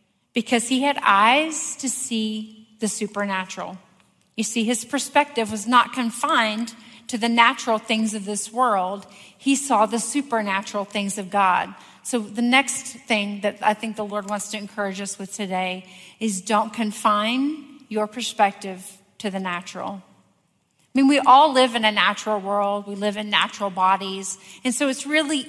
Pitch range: 205-245 Hz